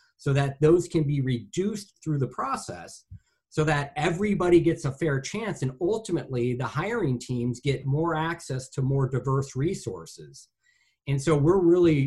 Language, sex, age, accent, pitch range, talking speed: English, male, 40-59, American, 125-150 Hz, 160 wpm